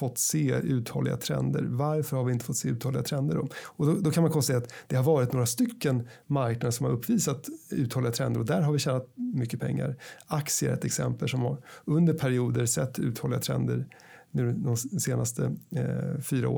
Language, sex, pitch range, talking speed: Swedish, male, 125-150 Hz, 185 wpm